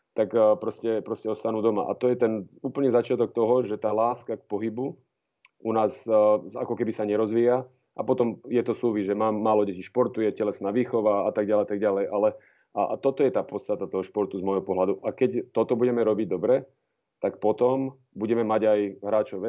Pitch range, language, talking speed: 100-115 Hz, Slovak, 195 wpm